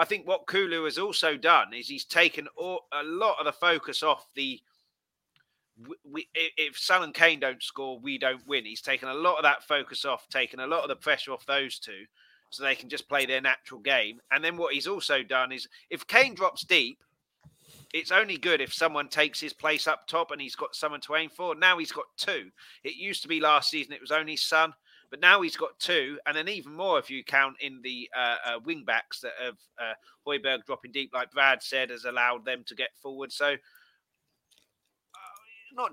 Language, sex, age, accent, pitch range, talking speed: English, male, 30-49, British, 140-200 Hz, 215 wpm